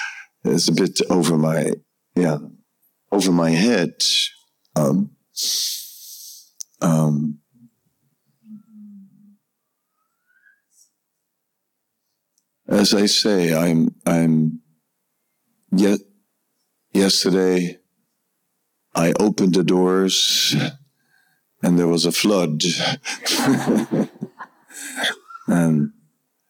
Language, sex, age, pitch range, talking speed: English, male, 50-69, 80-115 Hz, 65 wpm